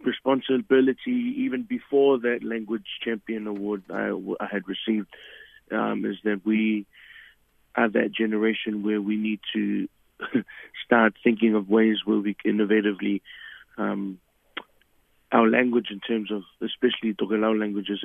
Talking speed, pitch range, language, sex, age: 135 wpm, 100-115 Hz, English, male, 20-39